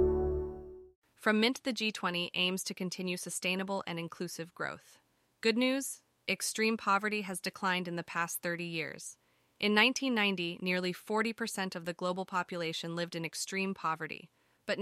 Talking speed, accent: 140 wpm, American